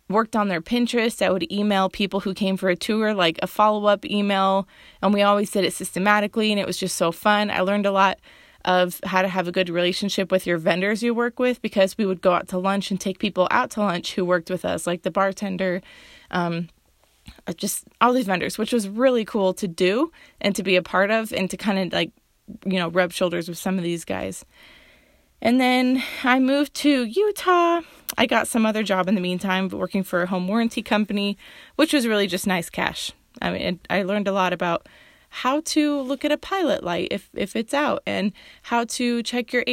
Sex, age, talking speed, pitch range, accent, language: female, 20-39, 220 wpm, 185-225 Hz, American, English